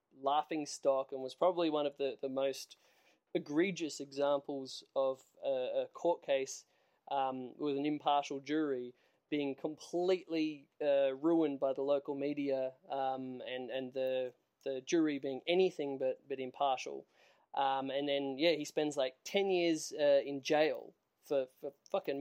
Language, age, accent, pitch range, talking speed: English, 20-39, Australian, 135-160 Hz, 150 wpm